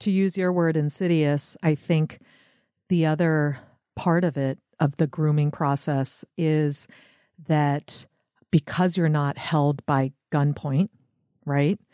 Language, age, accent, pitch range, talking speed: English, 40-59, American, 140-170 Hz, 125 wpm